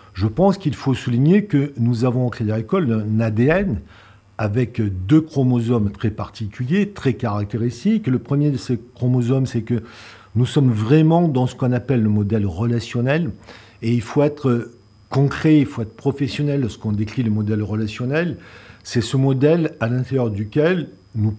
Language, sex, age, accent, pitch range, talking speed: French, male, 50-69, French, 110-145 Hz, 165 wpm